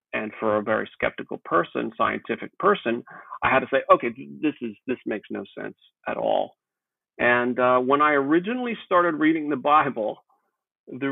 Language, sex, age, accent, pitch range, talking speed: English, male, 40-59, American, 115-175 Hz, 165 wpm